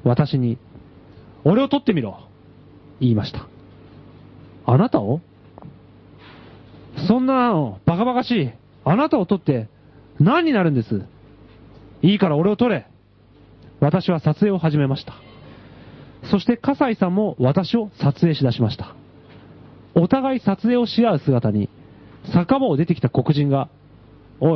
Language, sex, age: Japanese, male, 40-59